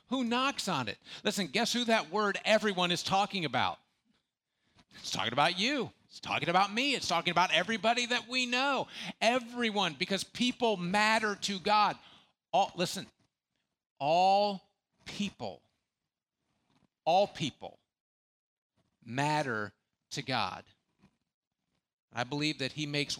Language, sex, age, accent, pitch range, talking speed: English, male, 50-69, American, 125-190 Hz, 120 wpm